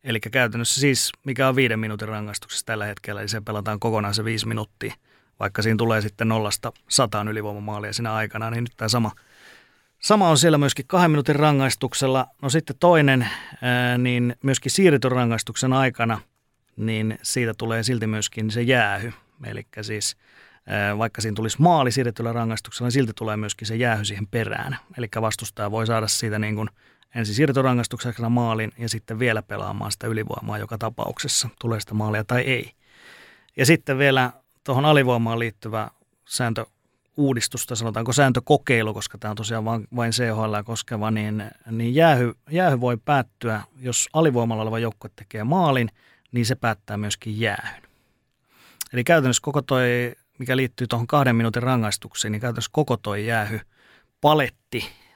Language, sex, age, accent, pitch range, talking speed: Finnish, male, 30-49, native, 110-130 Hz, 155 wpm